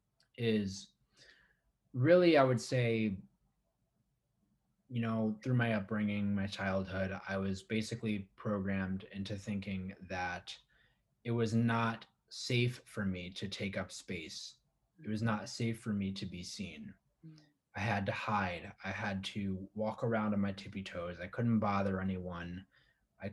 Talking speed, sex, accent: 145 wpm, male, American